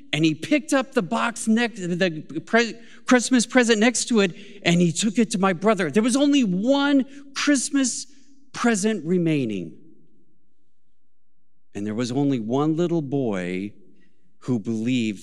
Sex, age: male, 40-59